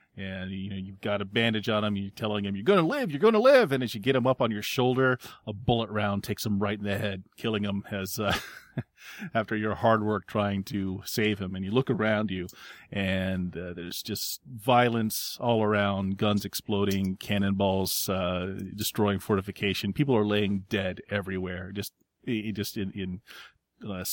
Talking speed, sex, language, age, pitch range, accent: 195 wpm, male, English, 30-49, 100-125 Hz, American